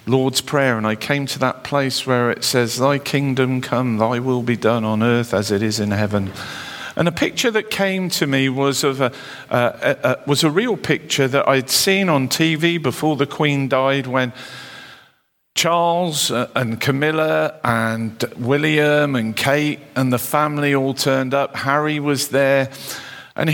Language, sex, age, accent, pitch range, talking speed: English, male, 50-69, British, 125-165 Hz, 175 wpm